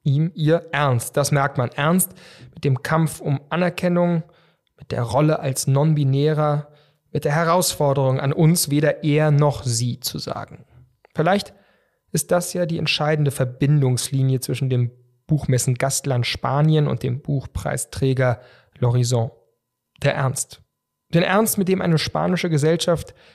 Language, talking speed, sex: German, 135 wpm, male